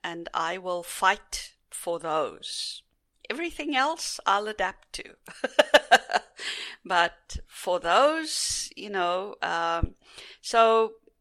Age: 50-69